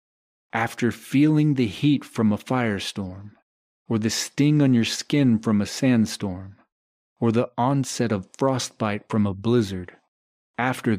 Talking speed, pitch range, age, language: 135 wpm, 100-125 Hz, 40-59, English